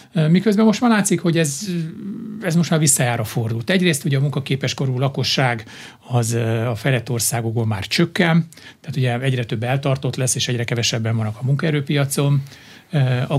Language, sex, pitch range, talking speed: Hungarian, male, 125-145 Hz, 160 wpm